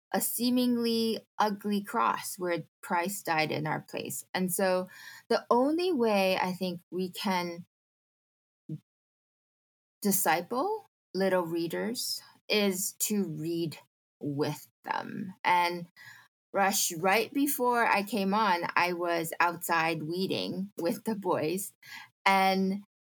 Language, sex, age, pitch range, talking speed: English, female, 10-29, 180-230 Hz, 110 wpm